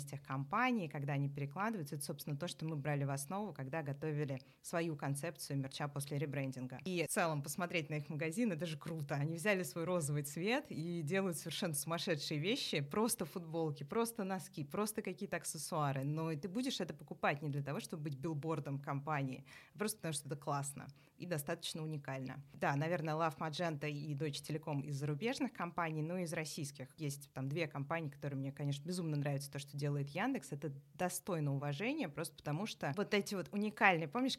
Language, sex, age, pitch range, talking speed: Russian, female, 20-39, 145-190 Hz, 185 wpm